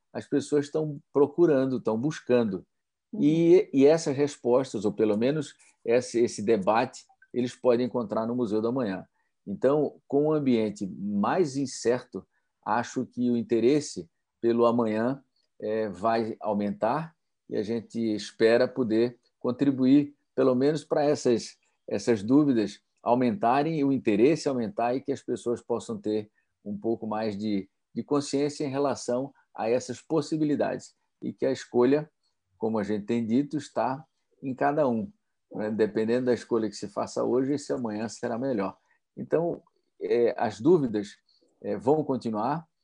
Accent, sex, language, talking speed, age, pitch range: Brazilian, male, Portuguese, 140 wpm, 50-69, 110-140 Hz